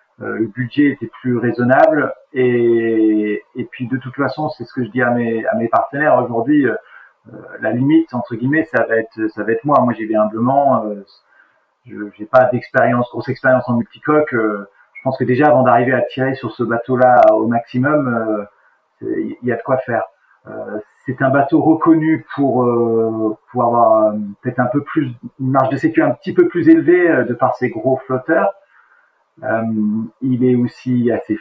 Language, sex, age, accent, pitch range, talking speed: French, male, 40-59, French, 115-140 Hz, 195 wpm